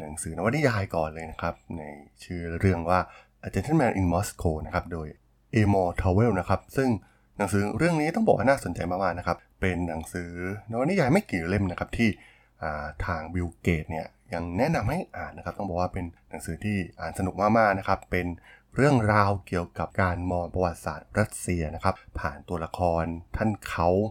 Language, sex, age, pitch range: Thai, male, 20-39, 85-105 Hz